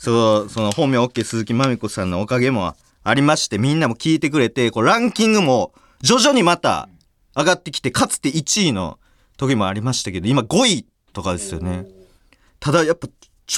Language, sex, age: Japanese, male, 40-59